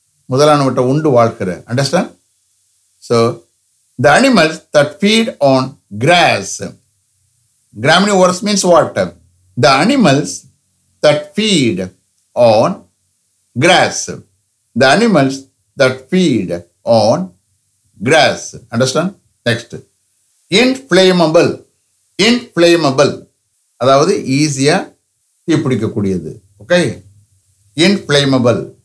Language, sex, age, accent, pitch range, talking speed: English, male, 60-79, Indian, 105-170 Hz, 65 wpm